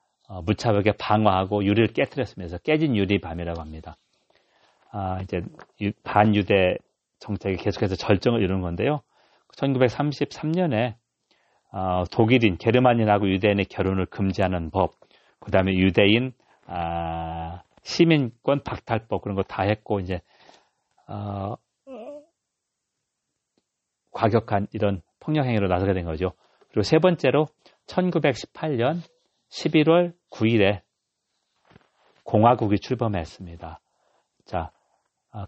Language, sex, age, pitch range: Korean, male, 40-59, 95-120 Hz